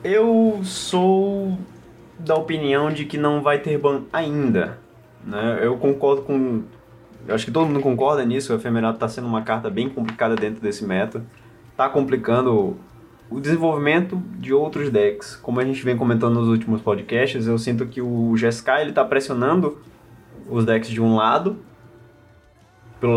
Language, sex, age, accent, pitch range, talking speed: Portuguese, male, 20-39, Brazilian, 115-160 Hz, 160 wpm